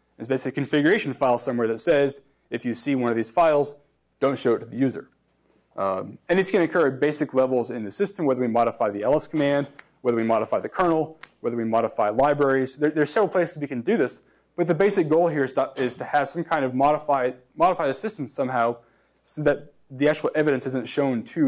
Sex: male